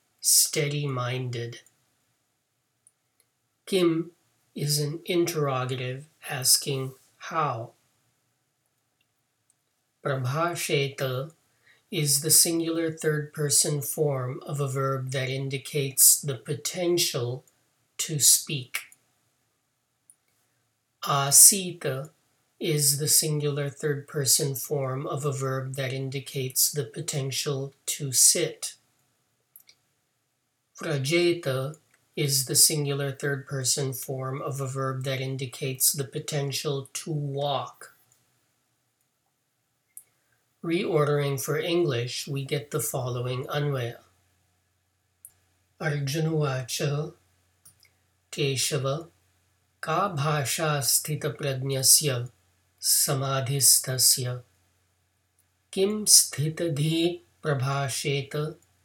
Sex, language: male, English